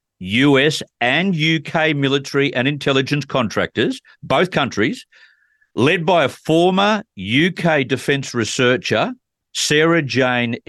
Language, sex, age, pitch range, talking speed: English, male, 50-69, 115-155 Hz, 100 wpm